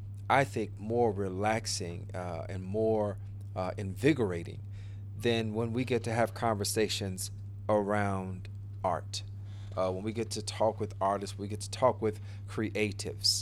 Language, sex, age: English, male, 40-59